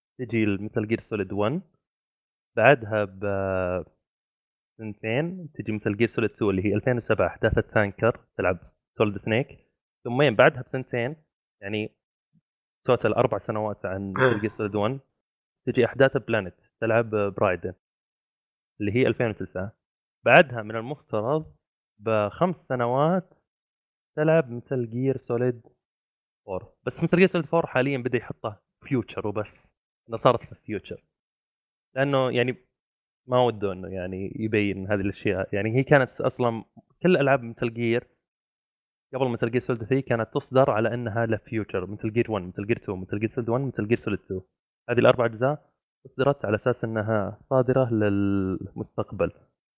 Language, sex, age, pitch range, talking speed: Arabic, male, 20-39, 105-130 Hz, 135 wpm